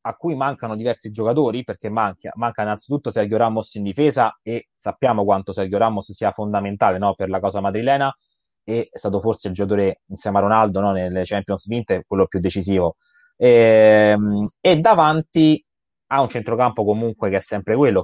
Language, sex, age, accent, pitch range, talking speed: Italian, male, 20-39, native, 100-135 Hz, 175 wpm